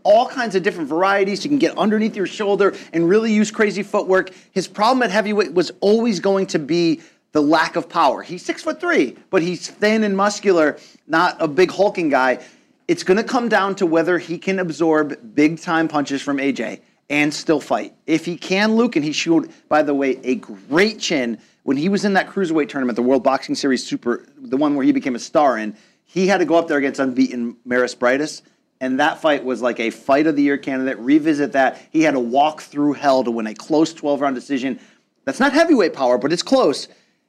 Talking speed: 215 wpm